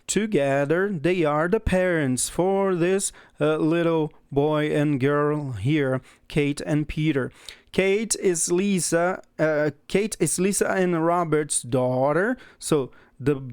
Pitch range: 140-180 Hz